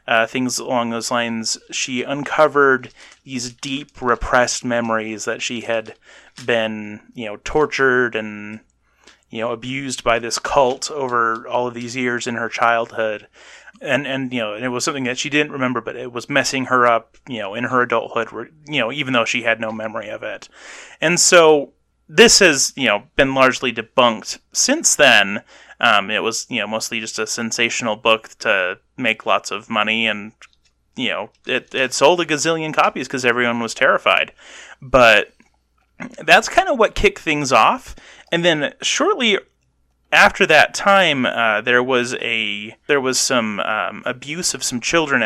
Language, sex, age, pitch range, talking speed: English, male, 30-49, 115-135 Hz, 170 wpm